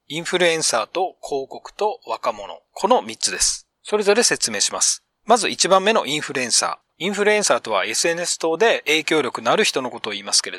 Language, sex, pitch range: Japanese, male, 150-205 Hz